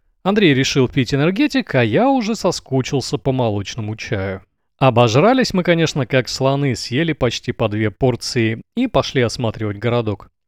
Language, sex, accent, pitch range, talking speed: Russian, male, native, 110-180 Hz, 145 wpm